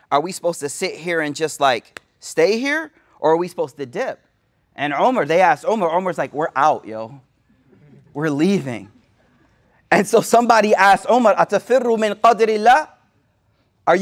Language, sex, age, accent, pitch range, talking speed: English, male, 30-49, American, 170-235 Hz, 160 wpm